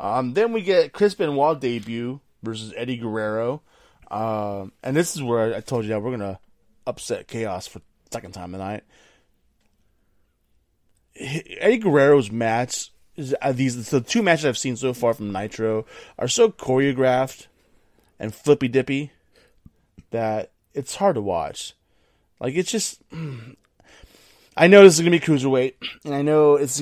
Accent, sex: American, male